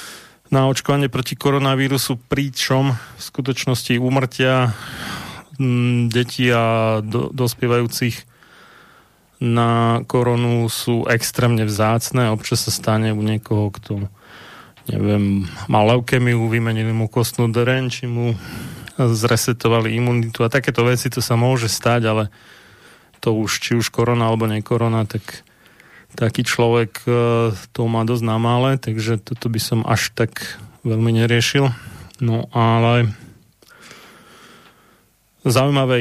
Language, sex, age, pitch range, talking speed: Slovak, male, 30-49, 115-125 Hz, 110 wpm